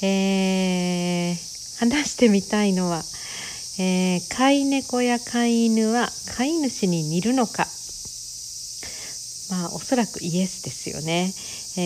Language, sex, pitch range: Japanese, female, 165-215 Hz